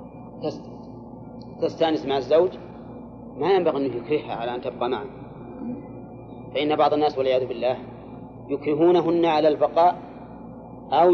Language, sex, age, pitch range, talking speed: Arabic, male, 40-59, 130-150 Hz, 115 wpm